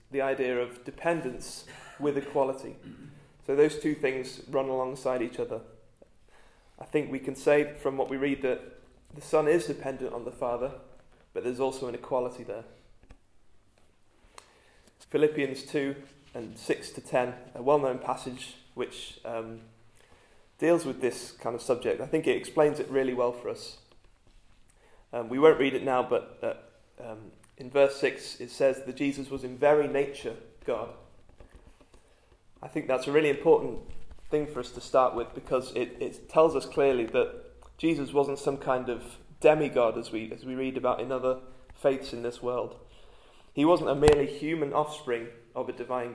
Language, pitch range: English, 120-145 Hz